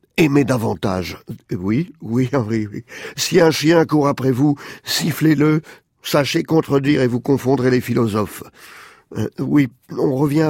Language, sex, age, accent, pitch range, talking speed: French, male, 50-69, French, 125-150 Hz, 145 wpm